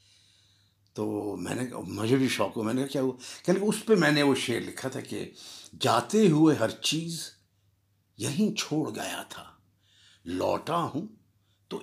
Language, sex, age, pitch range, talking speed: Urdu, male, 60-79, 105-175 Hz, 170 wpm